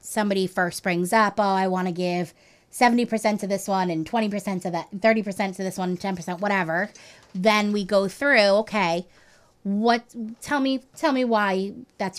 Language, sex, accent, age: English, female, American, 20-39